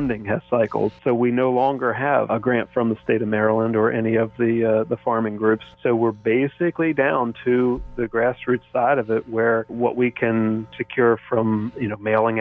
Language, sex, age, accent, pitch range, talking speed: English, male, 40-59, American, 110-125 Hz, 205 wpm